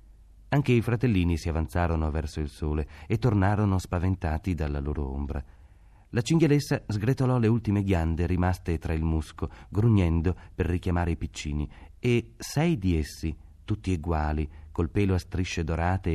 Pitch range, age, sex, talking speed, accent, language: 80-100 Hz, 30-49, male, 150 wpm, native, Italian